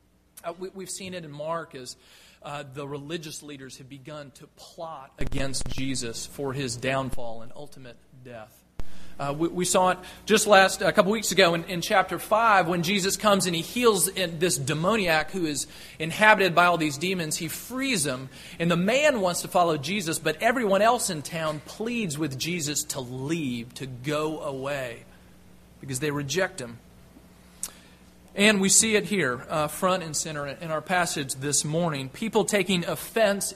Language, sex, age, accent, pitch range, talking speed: English, male, 40-59, American, 140-190 Hz, 175 wpm